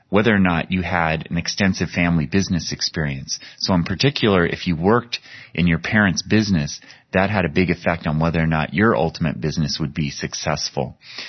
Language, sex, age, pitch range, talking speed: English, male, 30-49, 80-95 Hz, 185 wpm